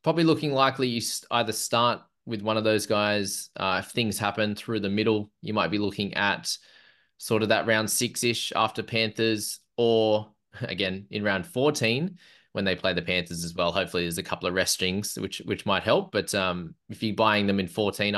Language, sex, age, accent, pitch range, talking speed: English, male, 20-39, Australian, 95-120 Hz, 200 wpm